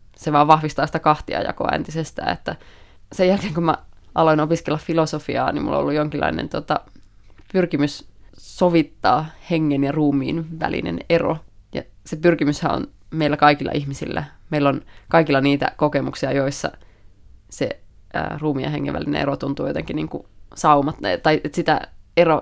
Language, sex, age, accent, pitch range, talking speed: Finnish, female, 20-39, native, 140-165 Hz, 145 wpm